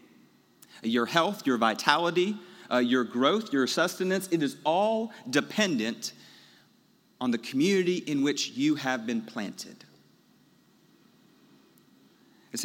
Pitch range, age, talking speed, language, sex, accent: 120-160 Hz, 40-59, 110 wpm, English, male, American